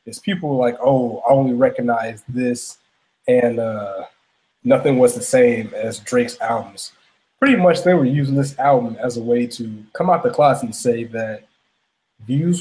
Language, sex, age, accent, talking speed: English, male, 20-39, American, 175 wpm